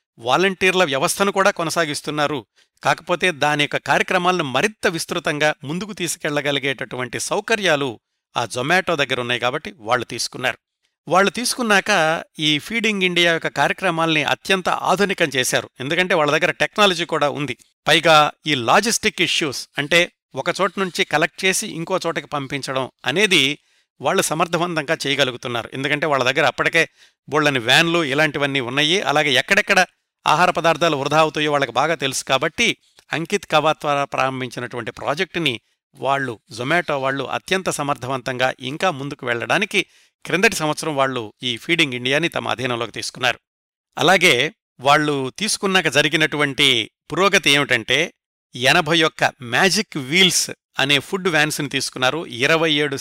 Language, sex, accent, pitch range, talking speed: Telugu, male, native, 135-180 Hz, 120 wpm